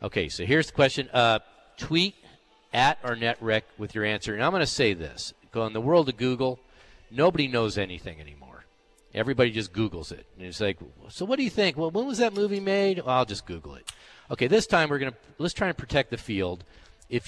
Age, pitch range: 50-69, 95-145 Hz